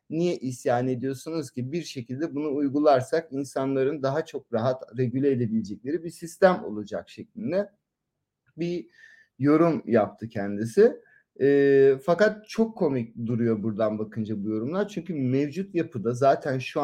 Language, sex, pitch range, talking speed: Turkish, male, 120-155 Hz, 130 wpm